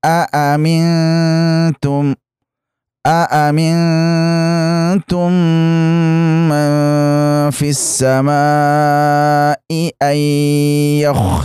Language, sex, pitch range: Indonesian, male, 125-165 Hz